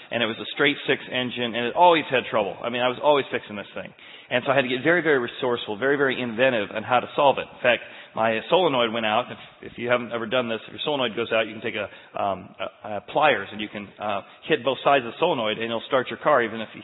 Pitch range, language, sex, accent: 120-150 Hz, English, male, American